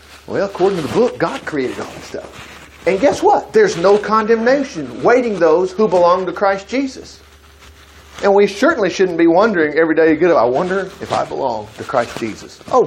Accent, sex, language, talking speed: American, male, English, 185 wpm